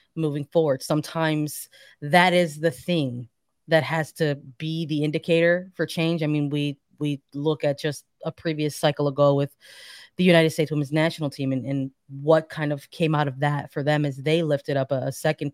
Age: 20-39